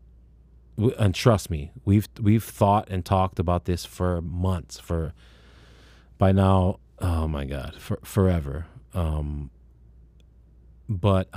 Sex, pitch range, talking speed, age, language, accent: male, 65-100 Hz, 115 wpm, 30-49, English, American